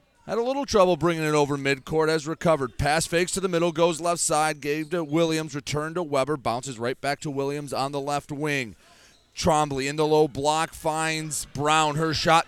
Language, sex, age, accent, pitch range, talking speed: English, male, 30-49, American, 150-175 Hz, 200 wpm